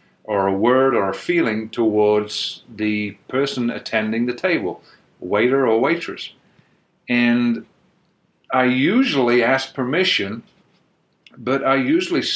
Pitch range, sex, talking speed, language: 115-170 Hz, male, 110 wpm, English